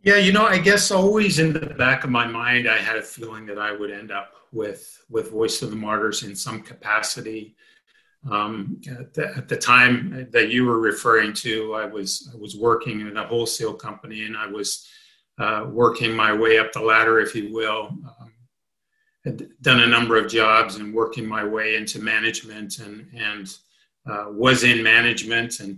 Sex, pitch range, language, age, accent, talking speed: male, 110-135 Hz, English, 50-69, American, 195 wpm